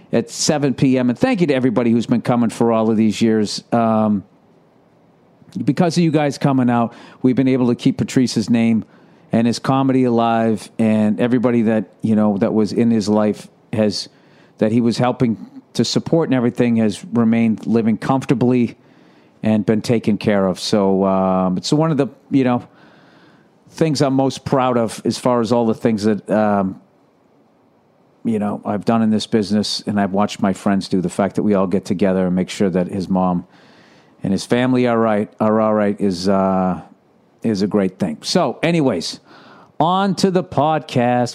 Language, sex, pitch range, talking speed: English, male, 110-135 Hz, 185 wpm